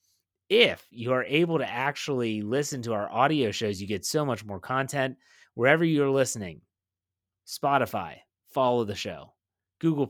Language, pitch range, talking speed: English, 105-135 Hz, 150 wpm